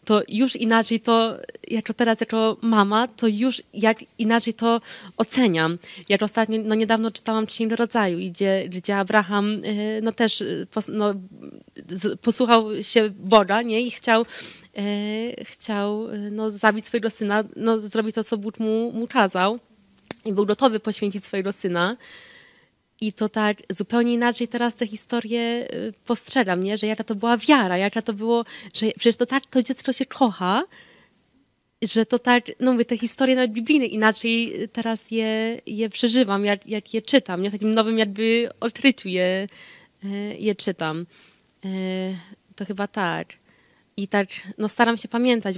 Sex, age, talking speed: female, 20-39, 155 wpm